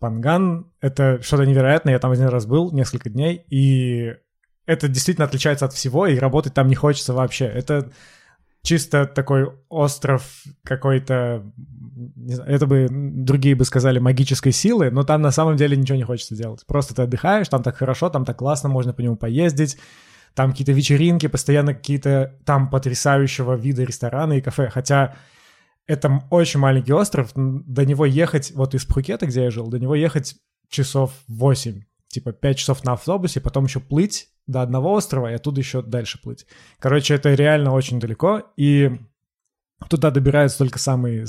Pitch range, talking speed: 125-145 Hz, 165 wpm